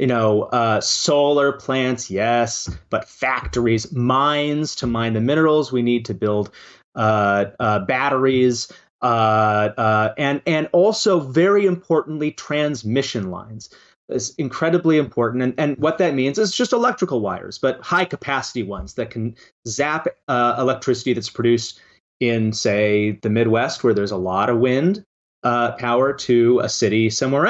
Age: 30-49